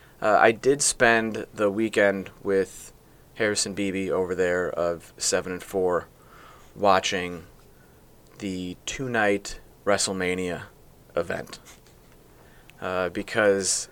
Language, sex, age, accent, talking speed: English, male, 30-49, American, 95 wpm